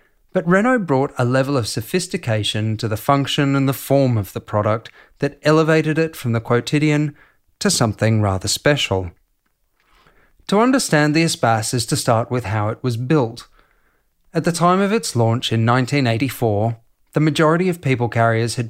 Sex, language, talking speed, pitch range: male, English, 165 wpm, 115-160 Hz